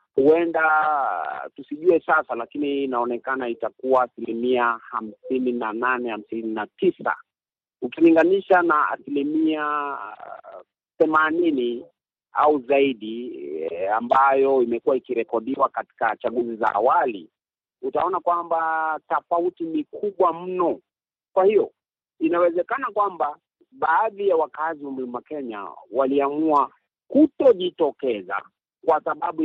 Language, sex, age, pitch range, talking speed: Swahili, male, 50-69, 130-185 Hz, 75 wpm